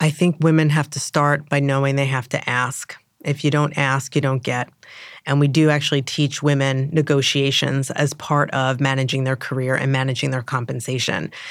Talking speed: 190 wpm